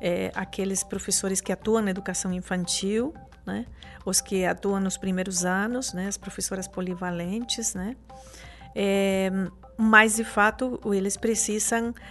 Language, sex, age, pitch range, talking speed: Portuguese, female, 50-69, 190-220 Hz, 130 wpm